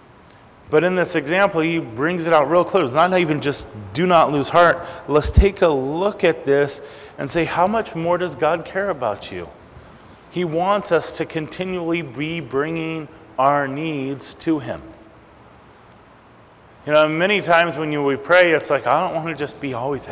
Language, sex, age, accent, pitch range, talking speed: English, male, 30-49, American, 135-165 Hz, 180 wpm